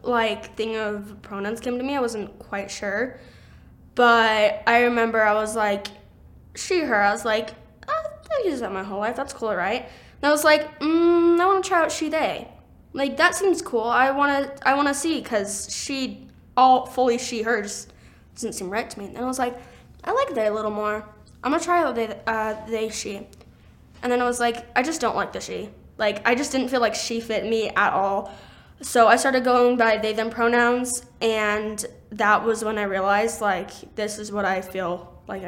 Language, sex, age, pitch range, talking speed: English, female, 10-29, 210-255 Hz, 210 wpm